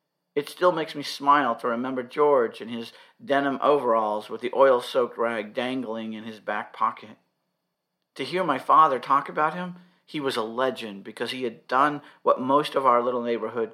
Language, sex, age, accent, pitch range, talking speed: English, male, 50-69, American, 110-150 Hz, 185 wpm